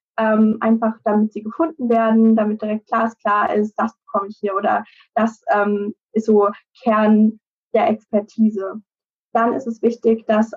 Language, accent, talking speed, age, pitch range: German, German, 165 wpm, 10-29, 215-235 Hz